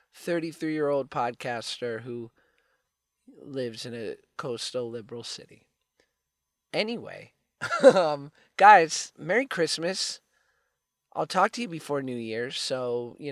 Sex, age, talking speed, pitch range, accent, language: male, 20-39, 100 wpm, 130-175 Hz, American, English